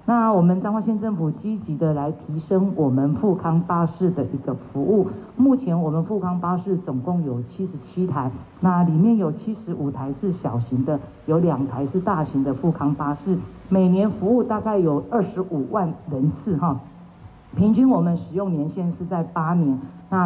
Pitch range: 150-195 Hz